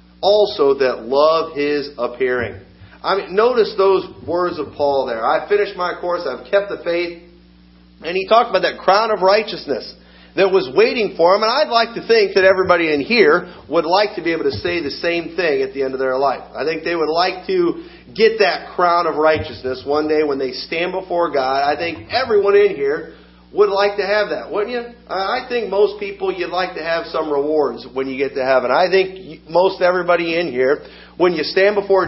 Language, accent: English, American